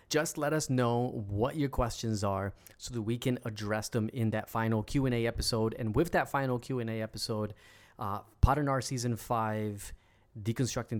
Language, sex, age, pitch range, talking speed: English, male, 20-39, 110-135 Hz, 175 wpm